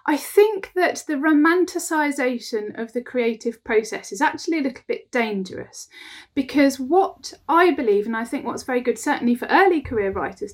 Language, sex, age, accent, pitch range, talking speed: English, female, 30-49, British, 235-305 Hz, 170 wpm